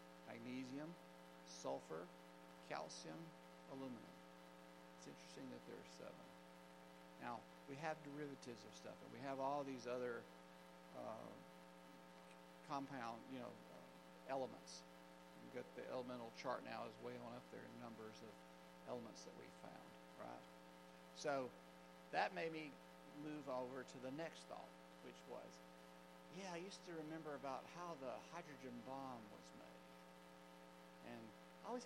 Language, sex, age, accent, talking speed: English, male, 50-69, American, 135 wpm